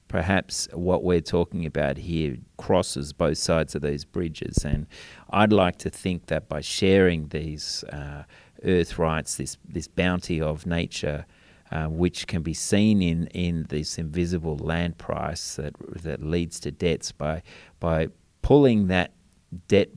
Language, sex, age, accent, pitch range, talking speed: English, male, 30-49, Australian, 80-95 Hz, 150 wpm